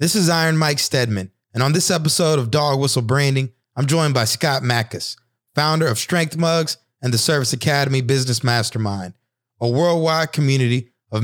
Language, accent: English, American